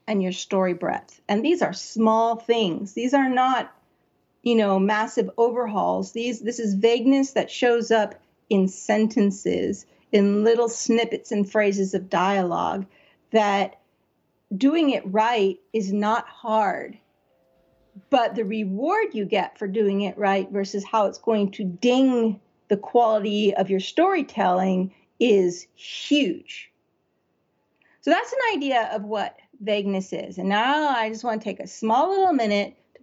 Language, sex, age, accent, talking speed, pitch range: English, female, 40-59, American, 145 wpm, 200-250 Hz